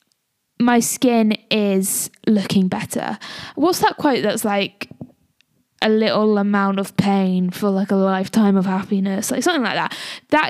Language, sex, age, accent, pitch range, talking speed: English, female, 10-29, British, 195-255 Hz, 150 wpm